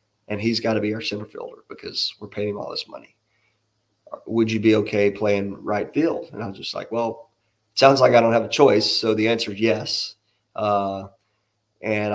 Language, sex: English, male